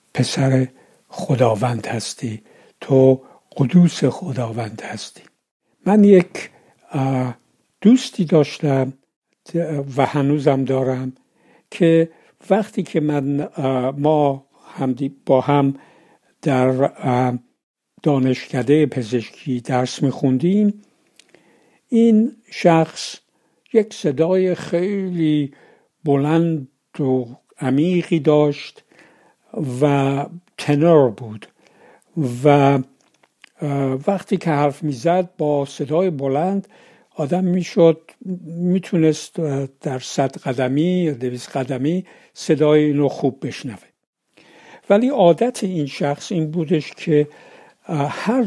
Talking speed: 85 wpm